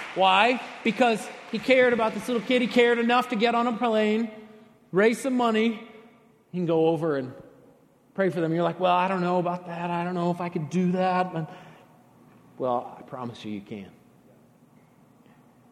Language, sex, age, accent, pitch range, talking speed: English, male, 30-49, American, 135-180 Hz, 185 wpm